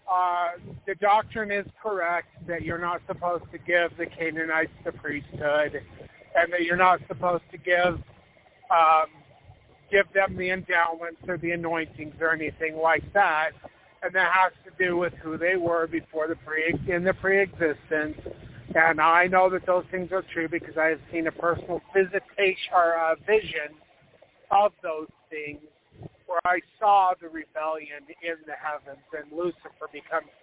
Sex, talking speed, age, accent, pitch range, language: male, 160 wpm, 50-69, American, 160-200 Hz, English